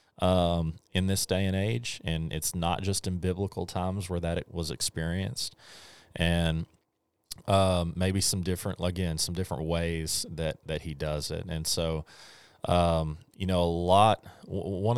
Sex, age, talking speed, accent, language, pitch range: male, 30-49, 160 wpm, American, English, 80-90 Hz